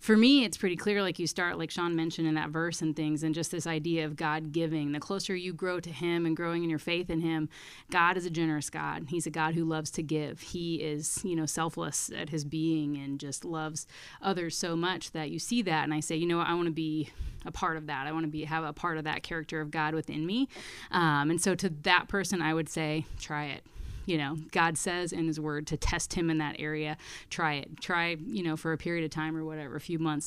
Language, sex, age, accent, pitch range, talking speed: English, female, 30-49, American, 155-180 Hz, 260 wpm